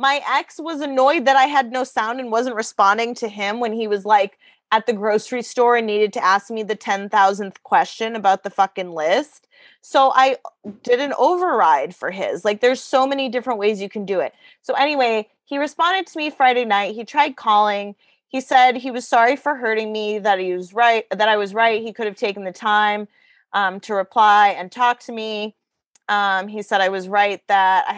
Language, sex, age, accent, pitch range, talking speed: English, female, 20-39, American, 195-245 Hz, 210 wpm